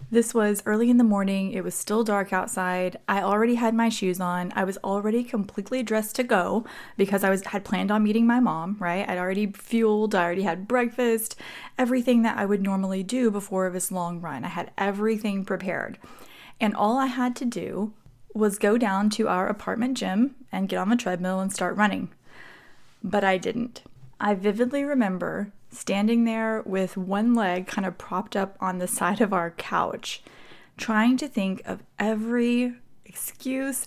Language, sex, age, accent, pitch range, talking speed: English, female, 20-39, American, 195-240 Hz, 180 wpm